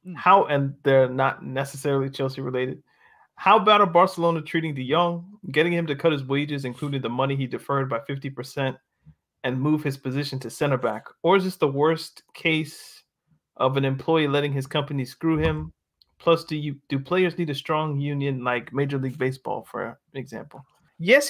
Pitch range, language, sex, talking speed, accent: 135-170 Hz, English, male, 185 wpm, American